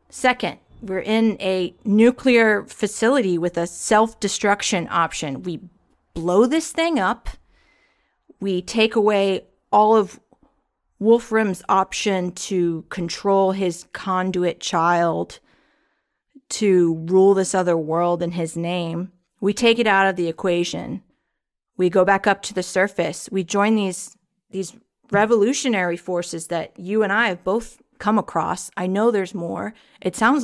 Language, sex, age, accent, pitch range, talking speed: English, female, 40-59, American, 175-220 Hz, 135 wpm